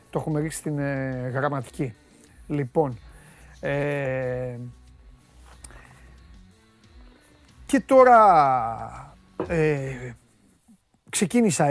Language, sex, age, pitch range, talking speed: Greek, male, 30-49, 140-195 Hz, 60 wpm